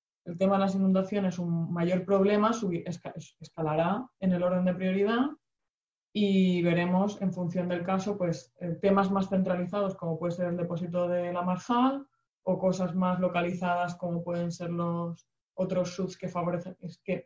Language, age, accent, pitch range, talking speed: Spanish, 20-39, Spanish, 165-190 Hz, 165 wpm